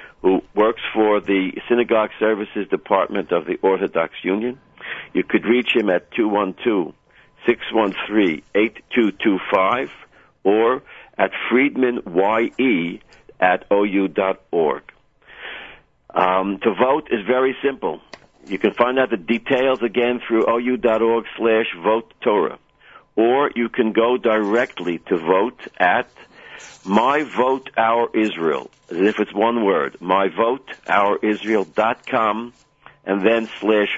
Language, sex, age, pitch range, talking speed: English, male, 60-79, 105-125 Hz, 100 wpm